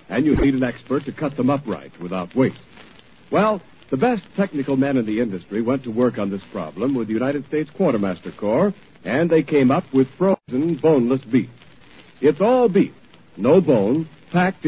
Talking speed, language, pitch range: 185 wpm, English, 115-165 Hz